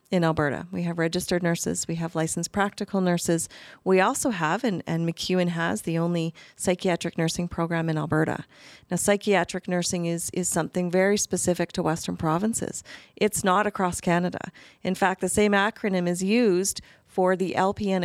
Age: 40-59